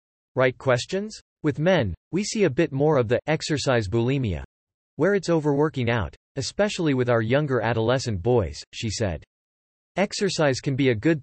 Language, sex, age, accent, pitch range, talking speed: English, male, 40-59, American, 110-155 Hz, 160 wpm